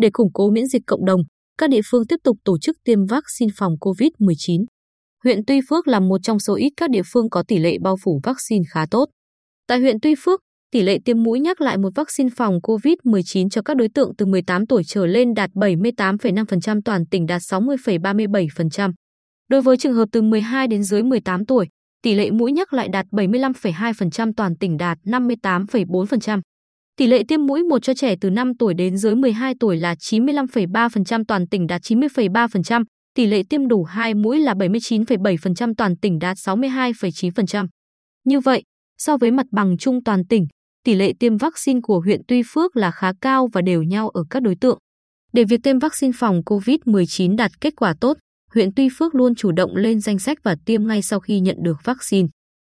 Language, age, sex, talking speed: Vietnamese, 20-39, female, 200 wpm